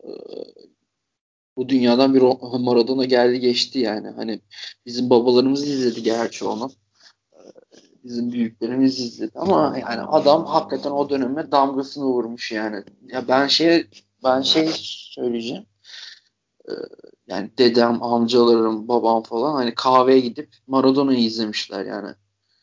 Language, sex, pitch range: Turkish, male, 115-135 Hz